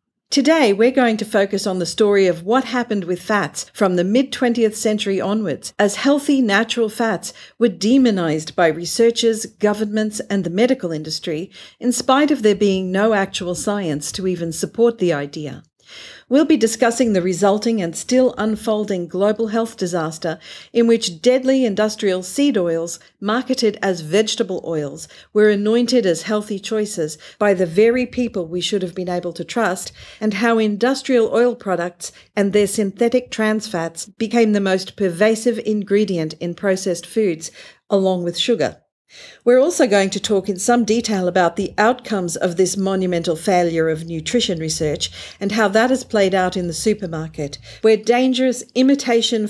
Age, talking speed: 50-69, 160 wpm